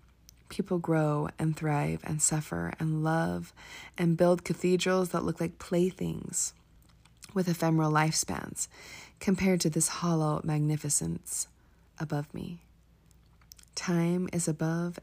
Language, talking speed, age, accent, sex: English, 110 wpm, 30-49, American, female